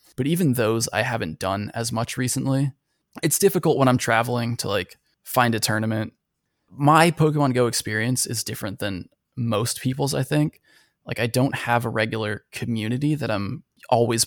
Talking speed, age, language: 170 wpm, 20-39, English